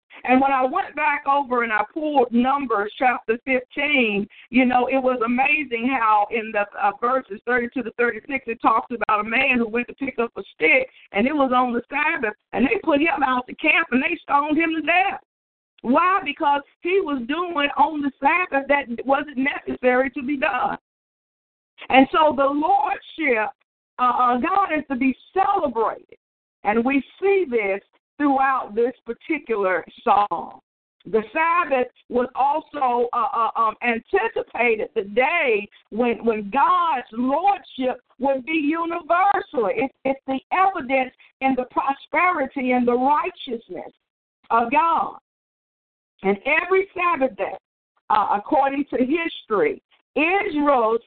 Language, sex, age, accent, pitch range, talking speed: English, female, 50-69, American, 240-320 Hz, 150 wpm